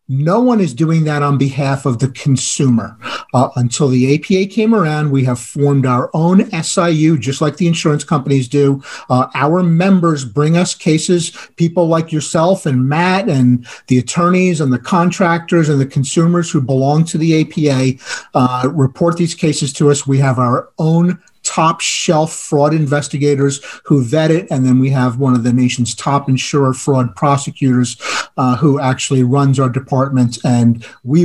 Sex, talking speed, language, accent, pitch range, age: male, 175 wpm, English, American, 135-175 Hz, 50-69